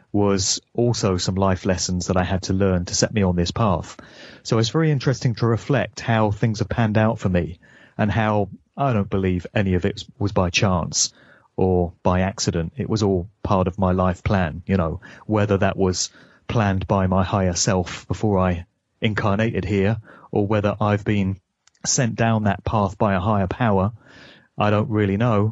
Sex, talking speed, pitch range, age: male, 190 wpm, 95-115 Hz, 30-49